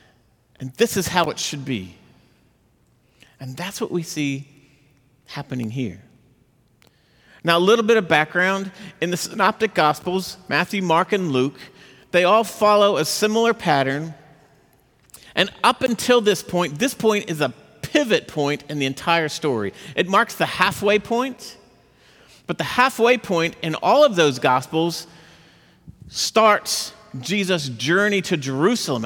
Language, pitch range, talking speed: English, 145-200 Hz, 140 wpm